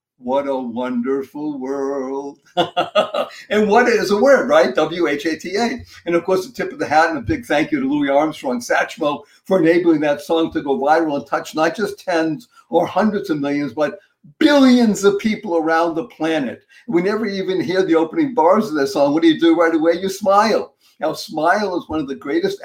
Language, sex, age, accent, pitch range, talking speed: English, male, 50-69, American, 150-235 Hz, 205 wpm